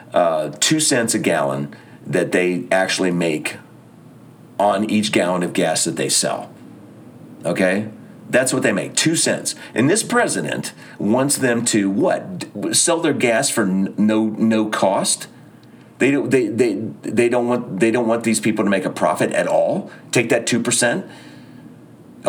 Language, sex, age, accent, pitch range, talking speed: English, male, 40-59, American, 95-130 Hz, 160 wpm